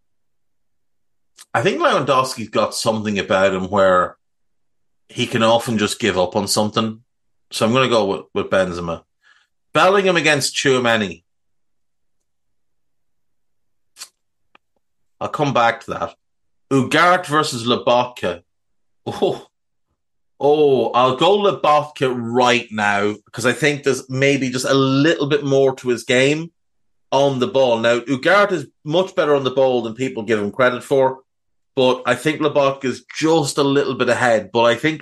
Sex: male